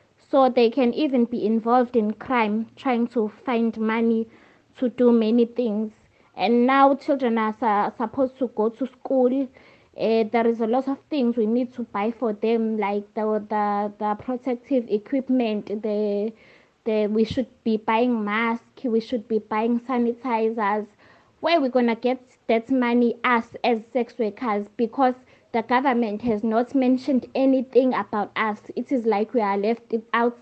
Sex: female